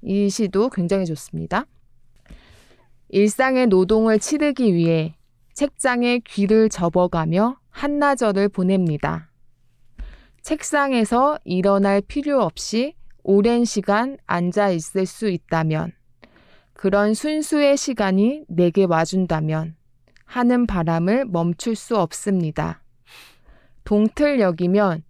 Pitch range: 170-245 Hz